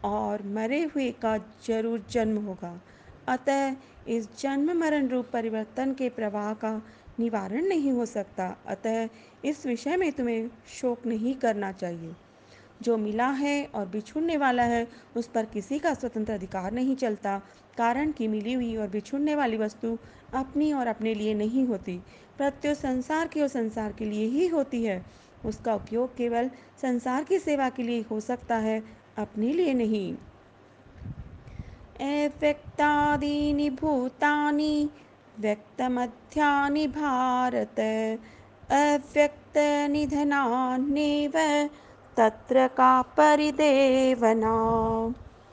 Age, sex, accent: 40-59, female, native